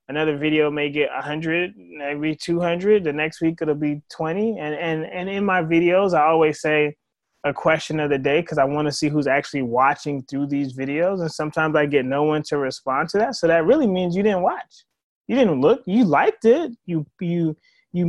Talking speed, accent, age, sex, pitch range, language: 210 wpm, American, 20-39, male, 145-195 Hz, English